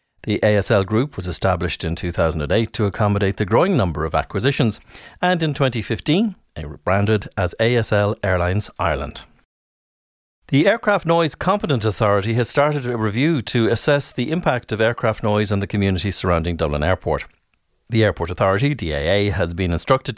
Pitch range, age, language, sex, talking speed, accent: 90-120 Hz, 40-59, English, male, 160 wpm, Irish